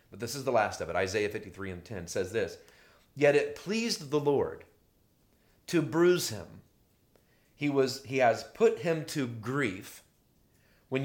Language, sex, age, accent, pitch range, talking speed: English, male, 30-49, American, 115-155 Hz, 165 wpm